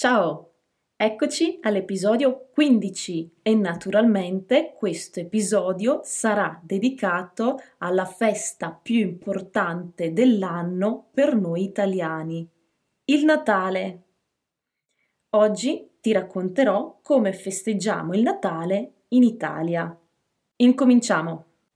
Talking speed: 85 wpm